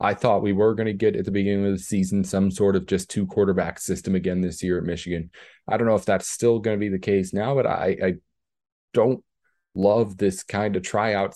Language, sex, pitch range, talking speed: English, male, 90-115 Hz, 245 wpm